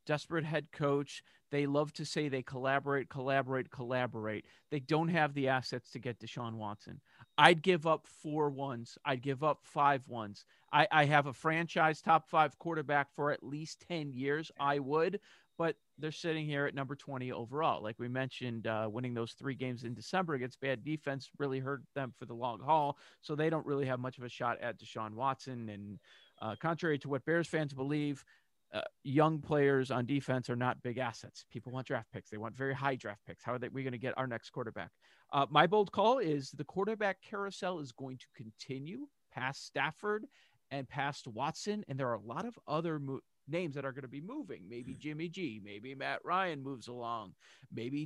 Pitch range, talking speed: 130-160 Hz, 200 wpm